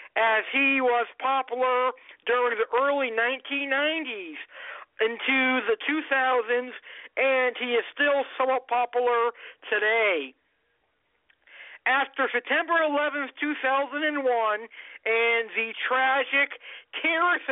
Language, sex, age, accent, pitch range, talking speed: English, male, 50-69, American, 225-285 Hz, 90 wpm